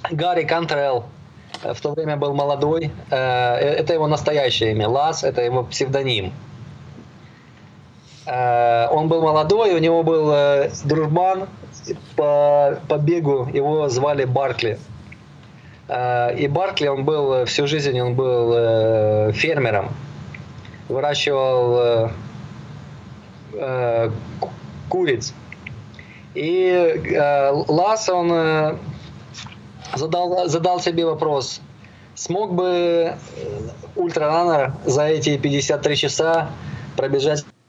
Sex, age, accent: male, 20-39, native